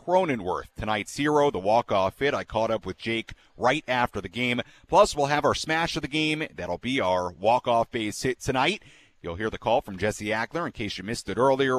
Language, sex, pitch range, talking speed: English, male, 115-155 Hz, 230 wpm